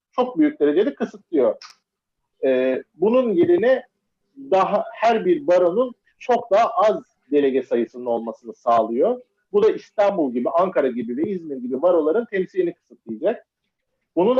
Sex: male